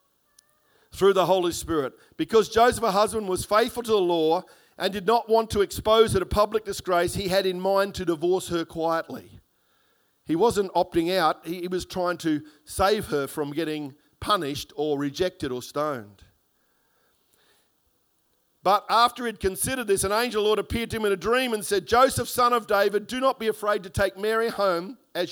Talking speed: 185 wpm